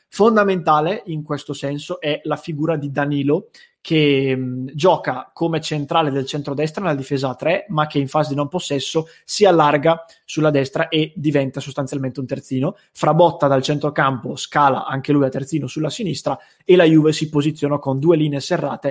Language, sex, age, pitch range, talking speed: English, male, 20-39, 140-165 Hz, 170 wpm